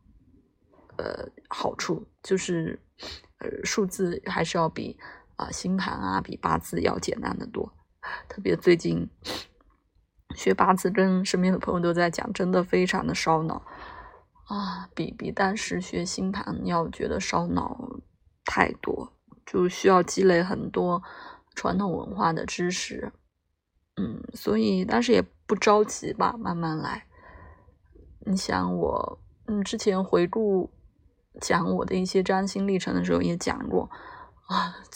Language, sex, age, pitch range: Chinese, female, 20-39, 175-205 Hz